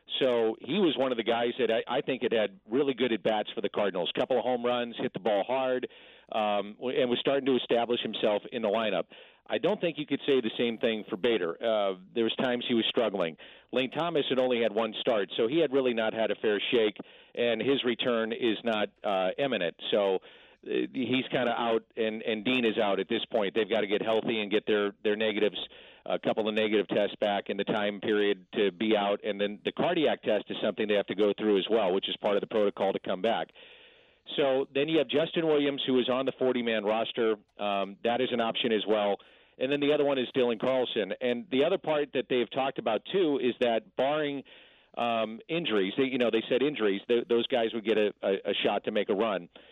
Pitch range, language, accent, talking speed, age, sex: 110-135 Hz, English, American, 235 wpm, 50-69, male